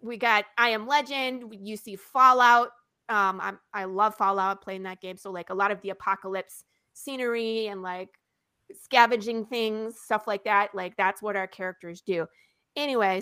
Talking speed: 170 wpm